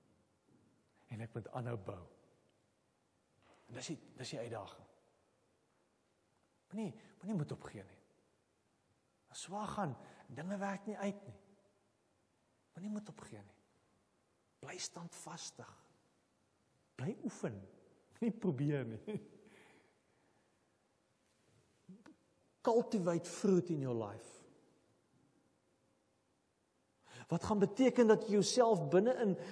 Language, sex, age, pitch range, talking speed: English, male, 40-59, 130-210 Hz, 100 wpm